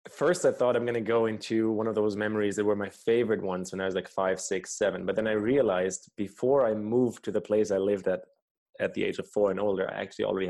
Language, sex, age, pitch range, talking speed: English, male, 20-39, 100-120 Hz, 270 wpm